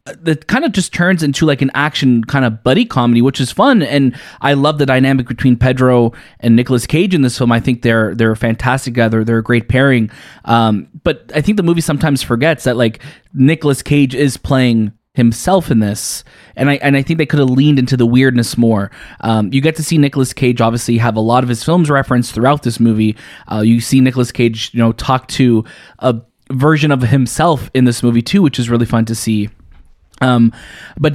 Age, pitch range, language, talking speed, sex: 20-39, 115-145 Hz, English, 215 wpm, male